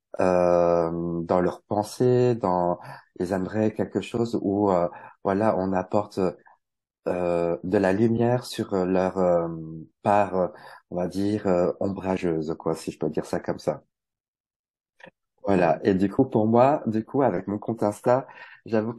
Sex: male